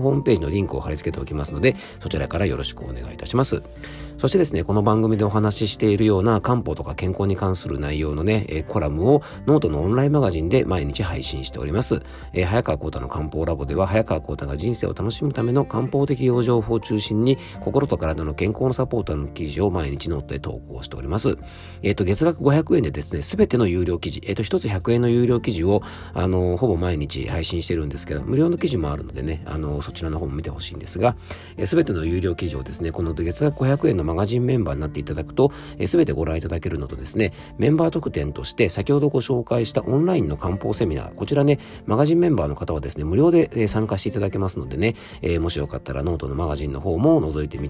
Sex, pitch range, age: male, 75-115 Hz, 40-59